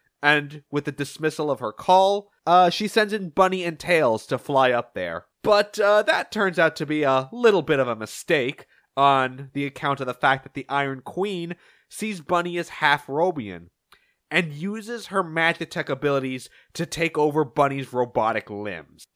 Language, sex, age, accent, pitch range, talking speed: English, male, 20-39, American, 130-170 Hz, 180 wpm